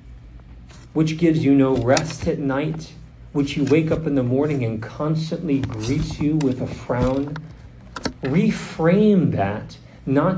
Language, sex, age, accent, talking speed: English, male, 40-59, American, 140 wpm